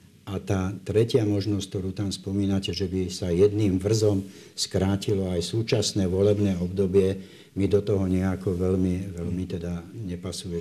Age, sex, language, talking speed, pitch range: 60-79, male, Slovak, 140 wpm, 85-100 Hz